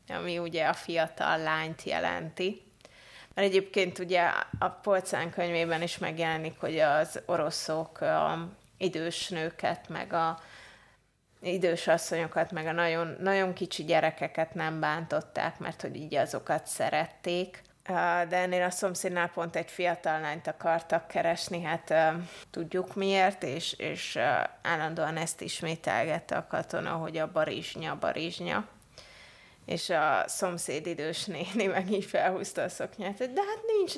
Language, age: Hungarian, 20-39